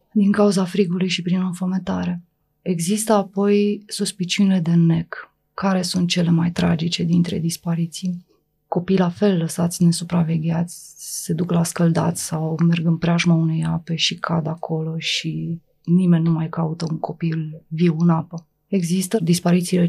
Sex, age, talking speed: female, 20-39, 150 wpm